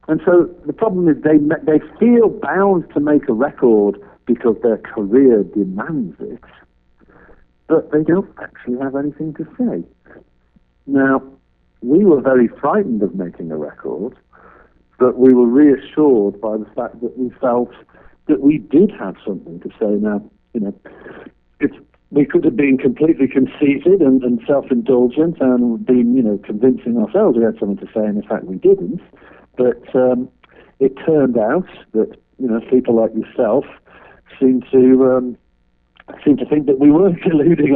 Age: 60-79